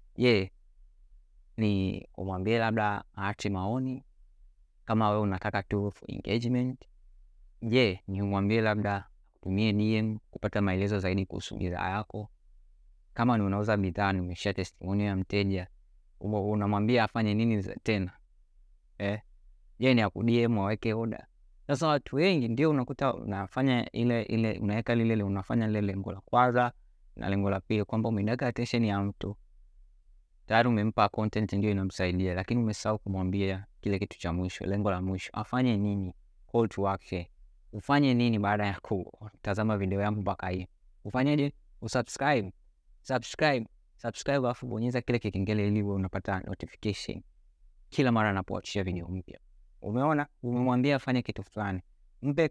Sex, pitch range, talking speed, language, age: male, 95-115 Hz, 140 wpm, Swahili, 20-39